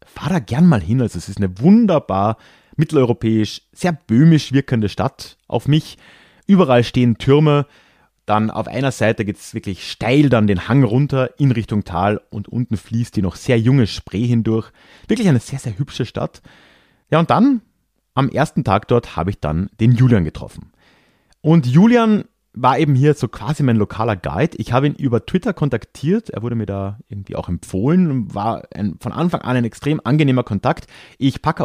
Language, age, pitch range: German, 30-49, 100-145 Hz